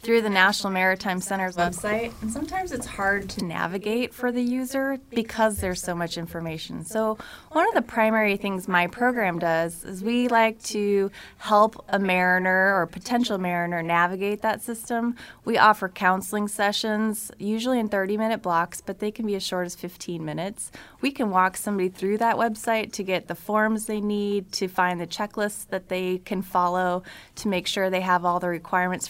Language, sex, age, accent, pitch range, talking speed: English, female, 20-39, American, 180-215 Hz, 185 wpm